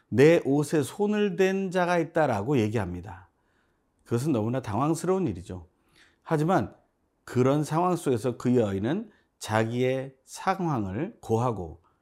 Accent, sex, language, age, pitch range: native, male, Korean, 40-59, 110-165 Hz